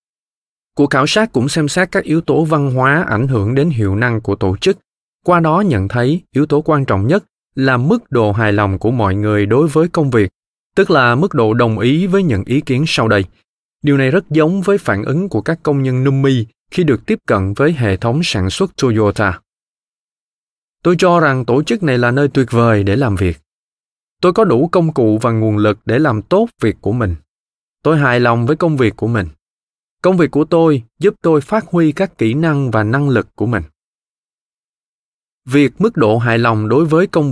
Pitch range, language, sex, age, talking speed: 110-160 Hz, Vietnamese, male, 20-39, 215 wpm